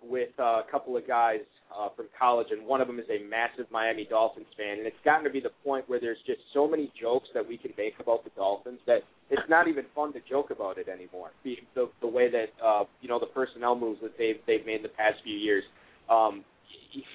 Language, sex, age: English, male, 20-39